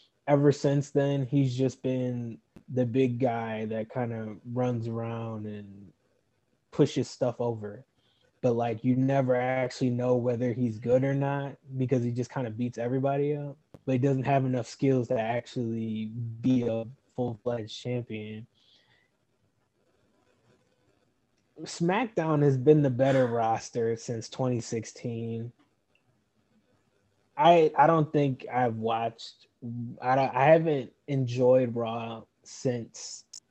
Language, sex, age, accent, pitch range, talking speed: English, male, 20-39, American, 115-140 Hz, 125 wpm